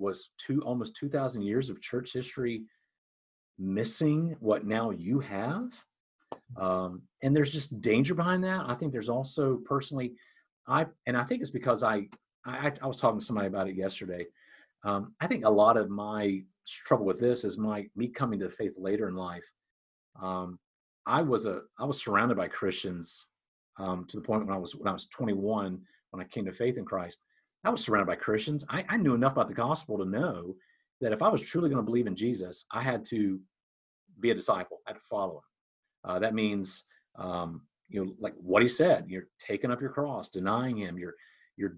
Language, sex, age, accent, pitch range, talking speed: English, male, 40-59, American, 95-140 Hz, 205 wpm